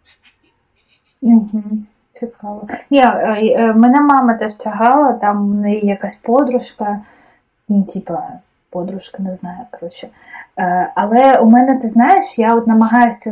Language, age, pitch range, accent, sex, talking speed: Ukrainian, 20-39, 195-255 Hz, native, female, 115 wpm